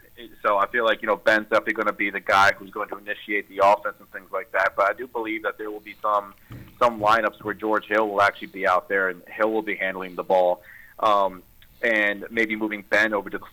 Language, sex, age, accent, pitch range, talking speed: English, male, 40-59, American, 100-115 Hz, 255 wpm